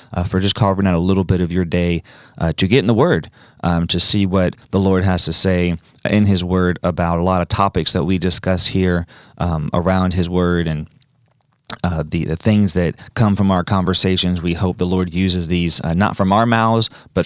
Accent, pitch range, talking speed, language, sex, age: American, 90-110 Hz, 225 wpm, English, male, 30-49